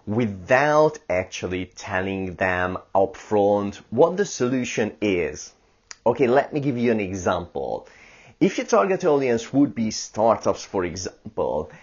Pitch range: 95-125 Hz